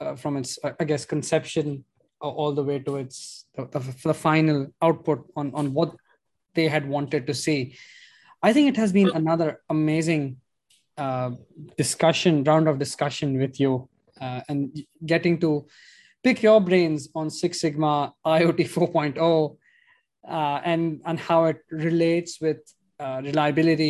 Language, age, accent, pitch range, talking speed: English, 20-39, Indian, 145-175 Hz, 155 wpm